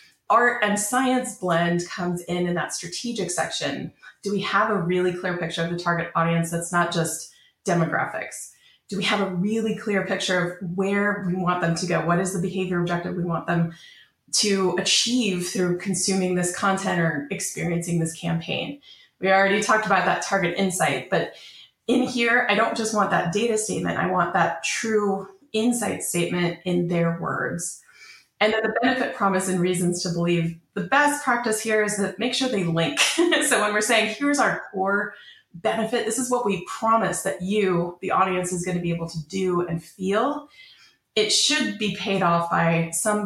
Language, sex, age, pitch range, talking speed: English, female, 20-39, 175-225 Hz, 185 wpm